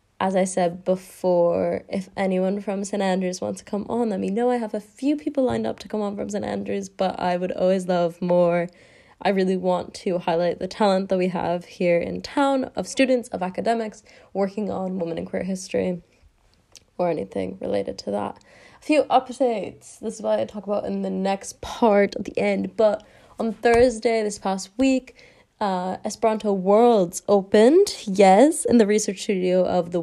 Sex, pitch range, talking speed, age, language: female, 175-215 Hz, 190 wpm, 20-39, English